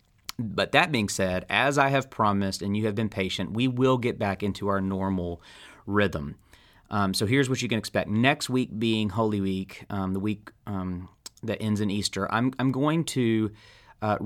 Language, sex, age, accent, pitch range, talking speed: English, male, 30-49, American, 95-120 Hz, 195 wpm